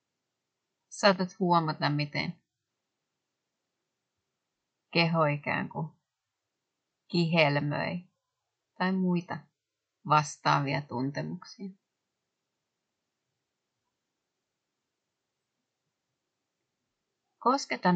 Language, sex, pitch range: Finnish, female, 145-180 Hz